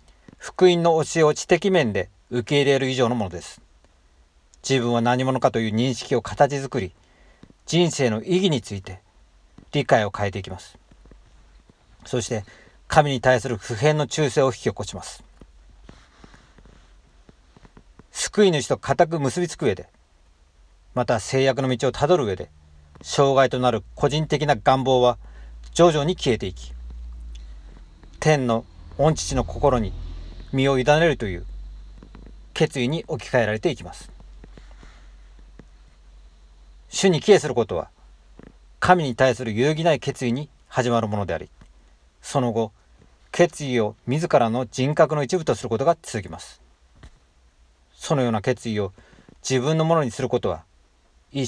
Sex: male